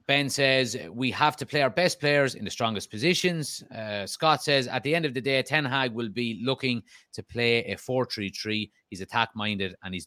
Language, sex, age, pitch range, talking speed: English, male, 30-49, 105-130 Hz, 210 wpm